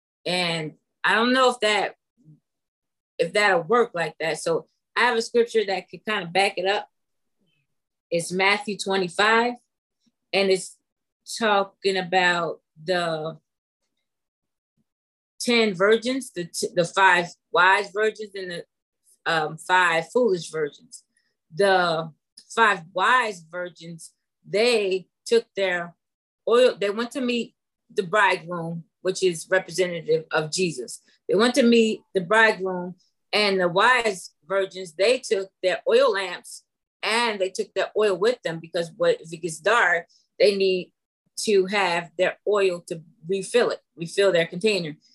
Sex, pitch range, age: female, 175-230 Hz, 20-39